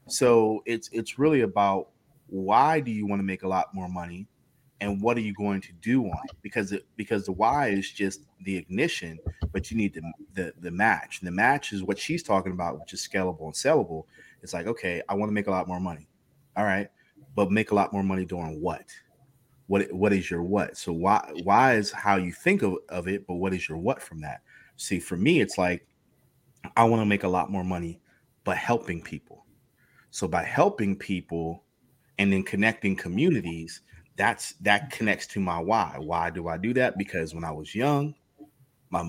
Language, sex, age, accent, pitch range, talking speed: English, male, 30-49, American, 90-120 Hz, 210 wpm